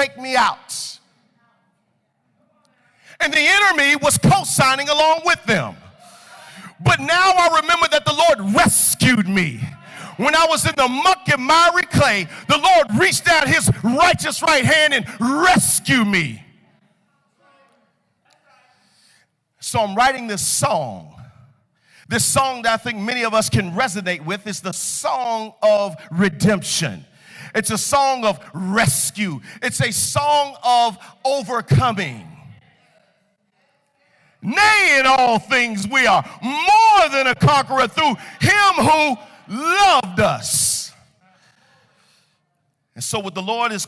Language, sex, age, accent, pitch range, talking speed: English, male, 50-69, American, 190-265 Hz, 125 wpm